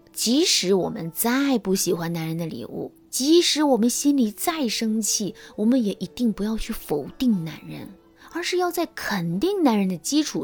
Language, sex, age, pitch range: Chinese, female, 20-39, 175-270 Hz